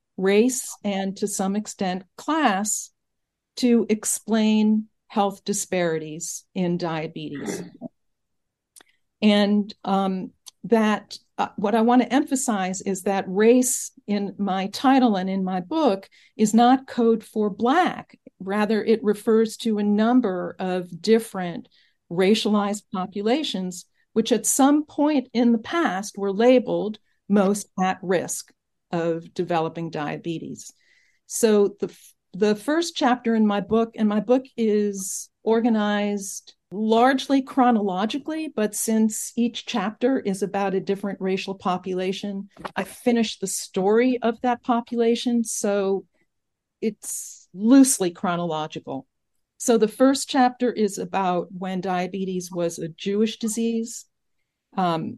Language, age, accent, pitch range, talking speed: English, 50-69, American, 190-235 Hz, 120 wpm